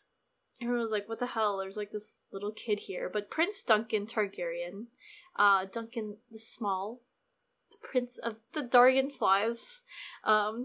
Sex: female